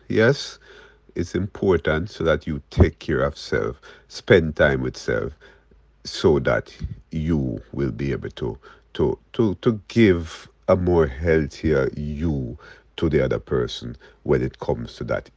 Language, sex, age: English, male, 50-69